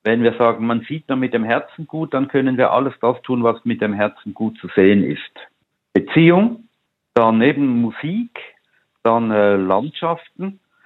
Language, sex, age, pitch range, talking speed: German, male, 50-69, 95-120 Hz, 170 wpm